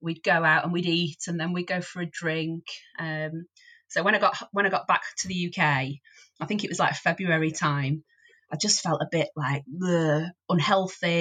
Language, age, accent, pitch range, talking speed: English, 30-49, British, 150-180 Hz, 215 wpm